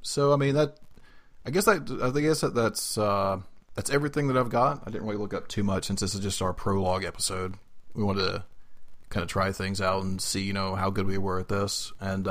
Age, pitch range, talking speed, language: 30-49, 100-135 Hz, 245 wpm, English